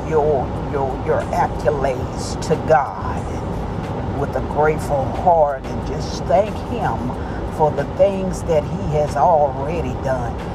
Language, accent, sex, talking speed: English, American, female, 125 wpm